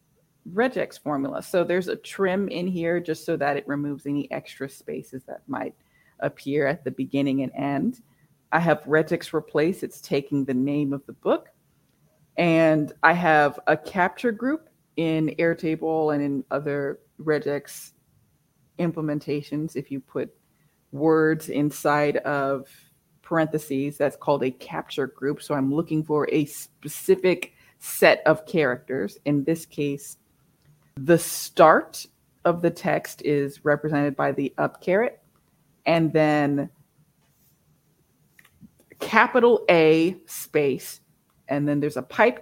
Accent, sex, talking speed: American, female, 130 wpm